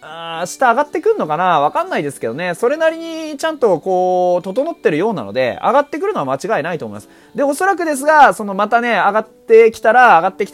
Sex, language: male, Japanese